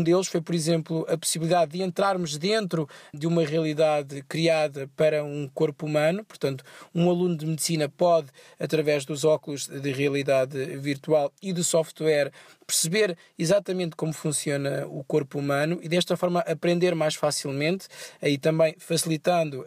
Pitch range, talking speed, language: 150-175 Hz, 145 wpm, Portuguese